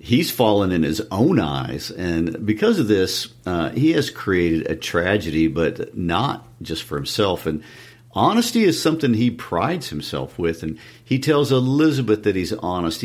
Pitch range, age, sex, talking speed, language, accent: 85-115 Hz, 50-69, male, 165 wpm, English, American